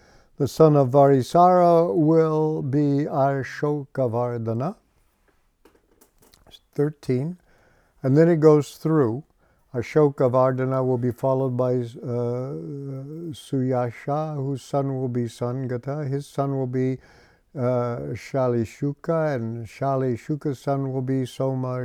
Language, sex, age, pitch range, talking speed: English, male, 60-79, 120-150 Hz, 105 wpm